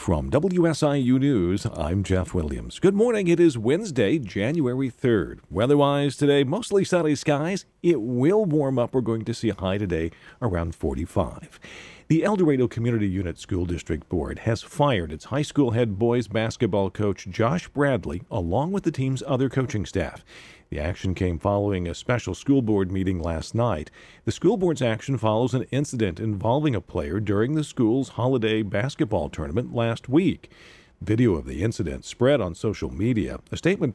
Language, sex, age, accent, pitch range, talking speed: English, male, 50-69, American, 95-135 Hz, 170 wpm